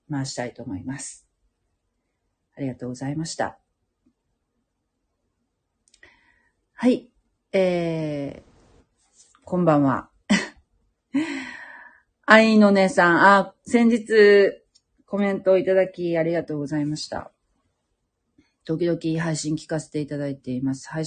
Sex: female